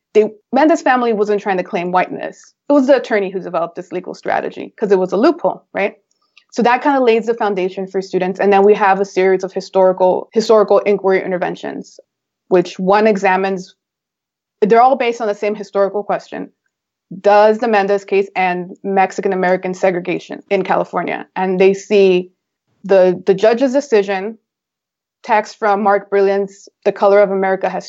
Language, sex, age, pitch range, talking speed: English, female, 20-39, 185-210 Hz, 170 wpm